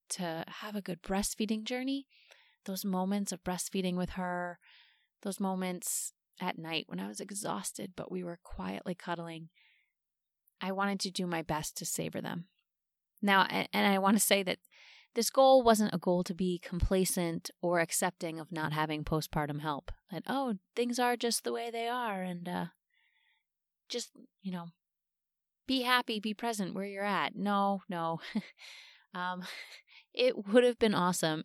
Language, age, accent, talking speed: English, 20-39, American, 165 wpm